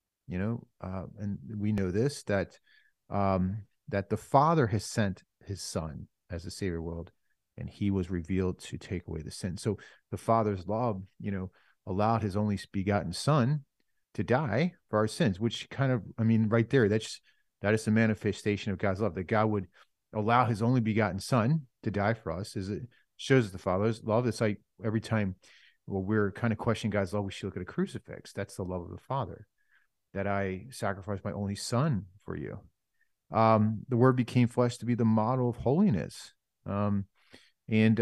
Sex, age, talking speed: male, 40-59, 195 wpm